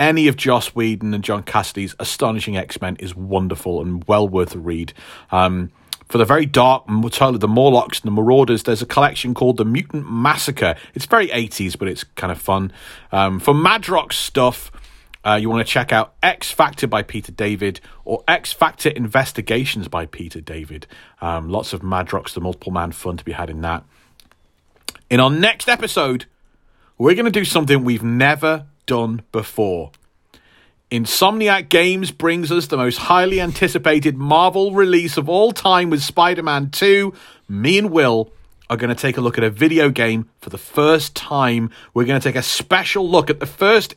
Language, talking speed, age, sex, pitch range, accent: English, 185 wpm, 40-59, male, 105-160 Hz, British